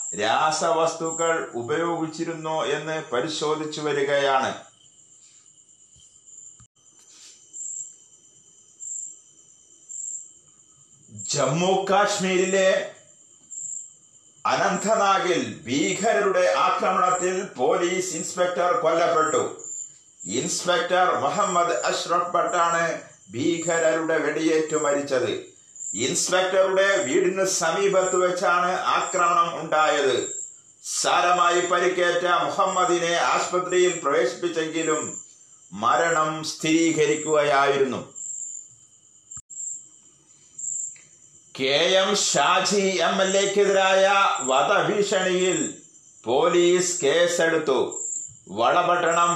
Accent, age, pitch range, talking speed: native, 50-69, 160-185 Hz, 50 wpm